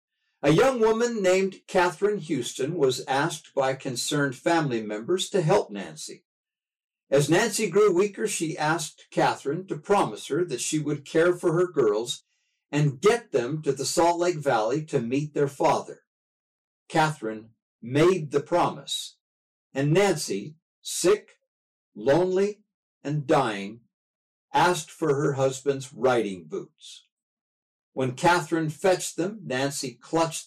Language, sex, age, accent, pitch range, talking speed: English, male, 60-79, American, 125-180 Hz, 130 wpm